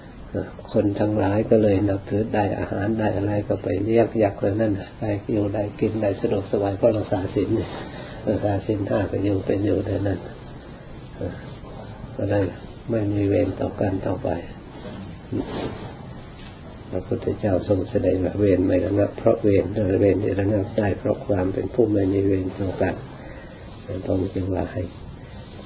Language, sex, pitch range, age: Thai, male, 95-110 Hz, 50-69